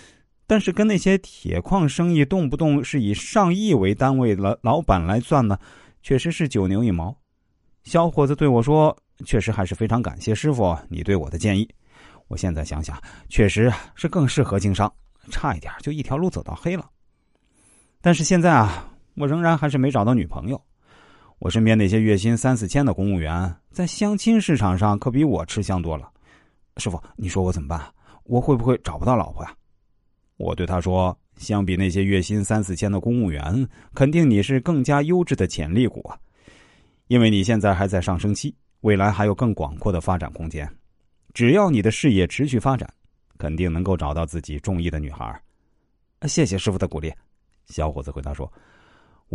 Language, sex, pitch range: Chinese, male, 95-145 Hz